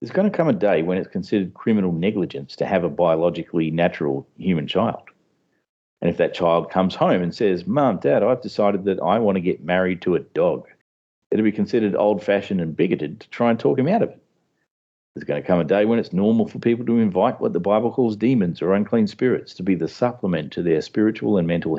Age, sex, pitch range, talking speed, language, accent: 40-59, male, 90-120 Hz, 230 wpm, English, Australian